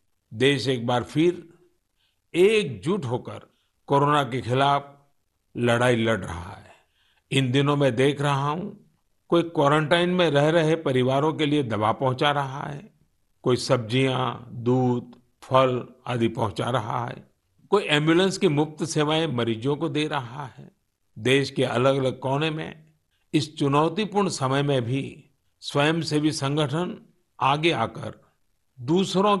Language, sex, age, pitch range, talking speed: Kannada, male, 50-69, 125-155 Hz, 135 wpm